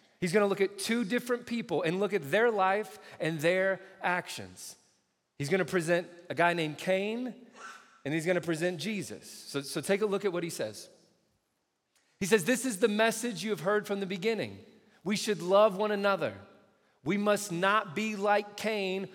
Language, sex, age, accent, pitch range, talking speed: English, male, 40-59, American, 125-190 Hz, 185 wpm